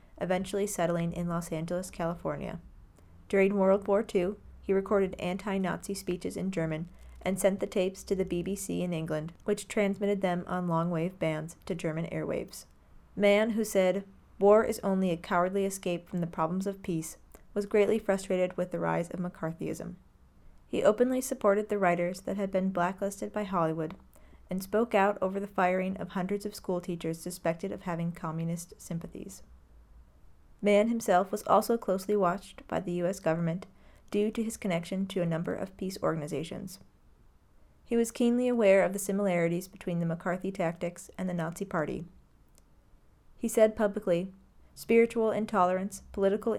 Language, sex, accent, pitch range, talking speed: English, female, American, 170-200 Hz, 160 wpm